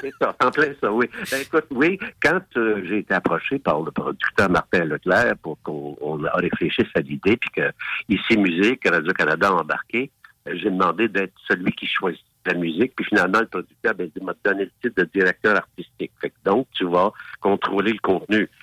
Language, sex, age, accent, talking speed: French, male, 60-79, French, 195 wpm